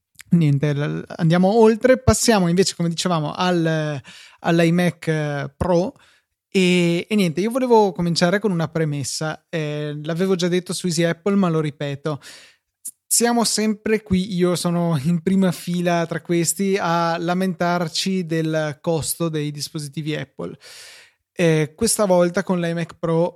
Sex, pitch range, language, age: male, 160-185 Hz, Italian, 20-39